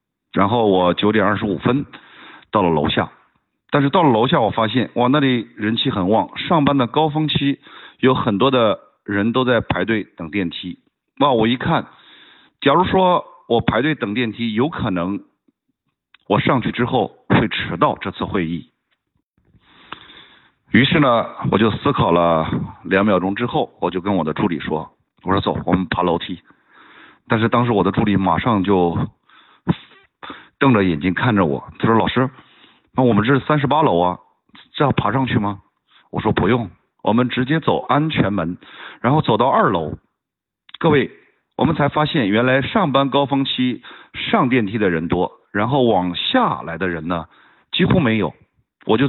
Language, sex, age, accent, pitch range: Chinese, male, 50-69, native, 95-135 Hz